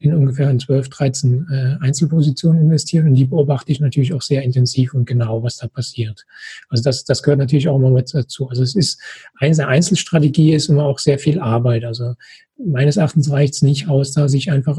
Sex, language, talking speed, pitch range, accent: male, German, 205 wpm, 135-155 Hz, German